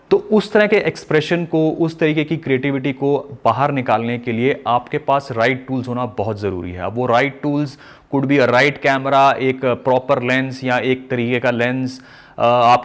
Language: English